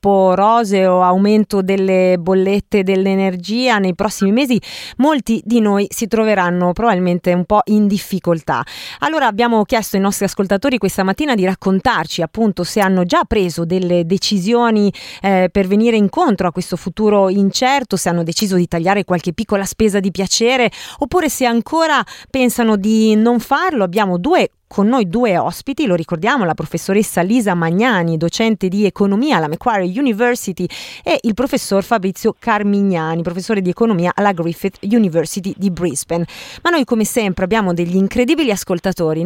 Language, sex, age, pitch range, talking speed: Italian, female, 30-49, 190-235 Hz, 150 wpm